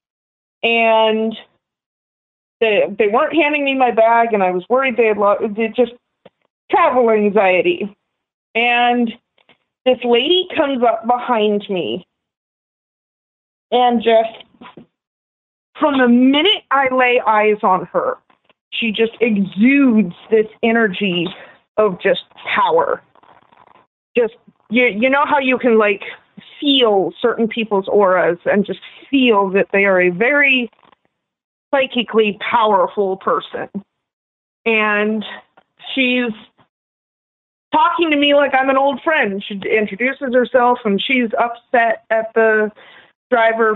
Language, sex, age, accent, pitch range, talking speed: English, female, 40-59, American, 215-265 Hz, 120 wpm